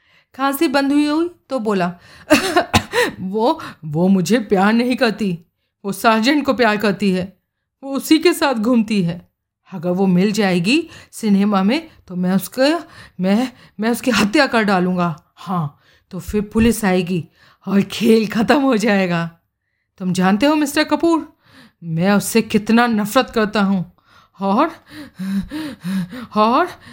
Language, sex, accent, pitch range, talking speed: Hindi, female, native, 185-260 Hz, 140 wpm